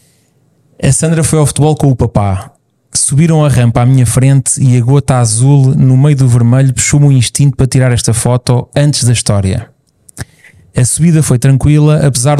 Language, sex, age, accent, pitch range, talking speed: Portuguese, male, 20-39, Portuguese, 120-140 Hz, 180 wpm